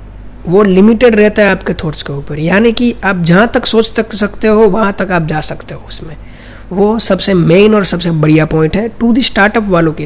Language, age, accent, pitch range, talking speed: Hindi, 20-39, native, 160-195 Hz, 220 wpm